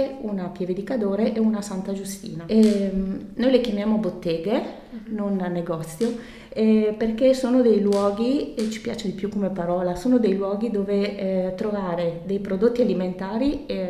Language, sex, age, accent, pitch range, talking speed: Italian, female, 30-49, native, 175-220 Hz, 155 wpm